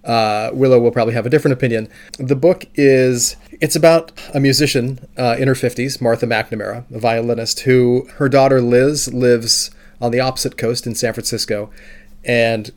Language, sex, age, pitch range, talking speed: English, male, 30-49, 115-135 Hz, 175 wpm